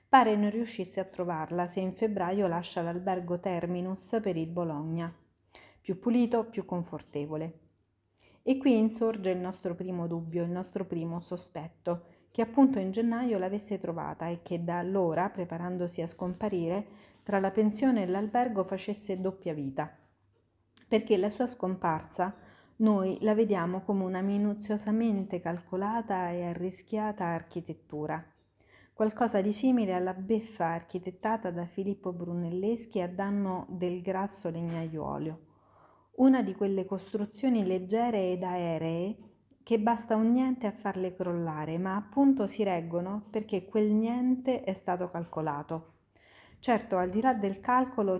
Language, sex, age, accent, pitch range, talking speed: Italian, female, 40-59, native, 175-215 Hz, 135 wpm